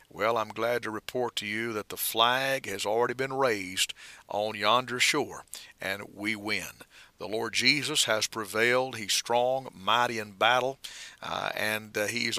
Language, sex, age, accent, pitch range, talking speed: English, male, 50-69, American, 110-135 Hz, 165 wpm